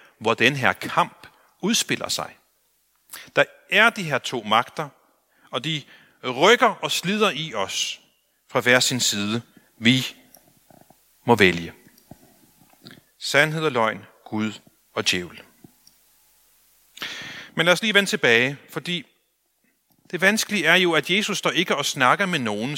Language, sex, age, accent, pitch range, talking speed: Danish, male, 40-59, native, 130-185 Hz, 135 wpm